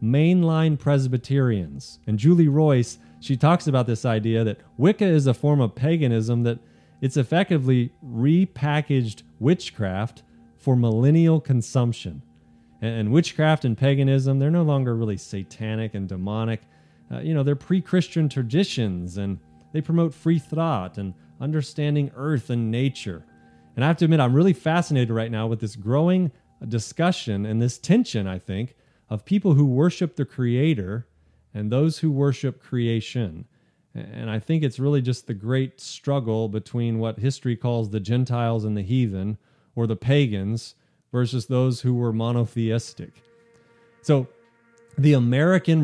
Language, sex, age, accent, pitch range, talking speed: English, male, 30-49, American, 110-150 Hz, 145 wpm